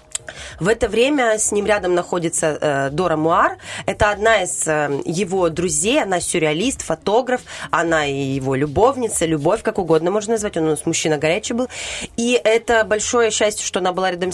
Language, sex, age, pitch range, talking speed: Russian, female, 20-39, 170-225 Hz, 165 wpm